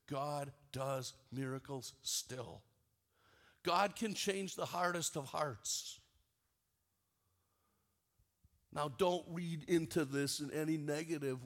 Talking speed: 100 wpm